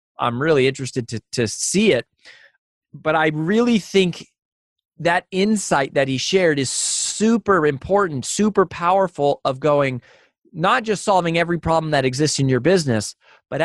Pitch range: 125-175 Hz